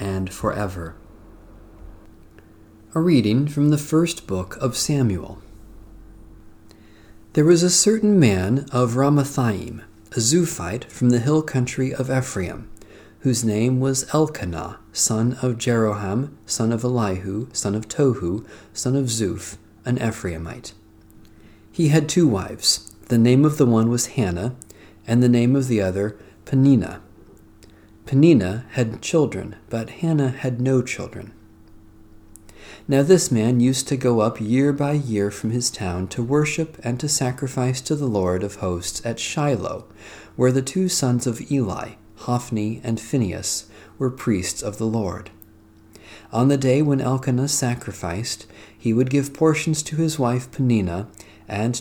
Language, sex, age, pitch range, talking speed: English, male, 40-59, 105-130 Hz, 140 wpm